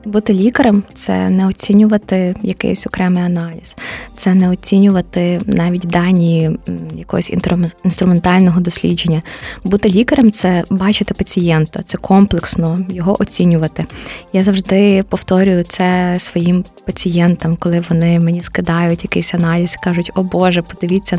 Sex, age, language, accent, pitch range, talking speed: female, 20-39, Ukrainian, native, 180-205 Hz, 120 wpm